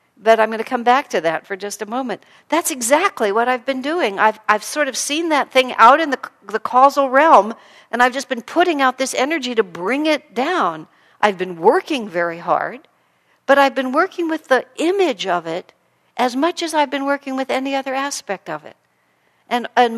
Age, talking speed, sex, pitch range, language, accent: 60-79, 215 wpm, female, 205-295 Hz, English, American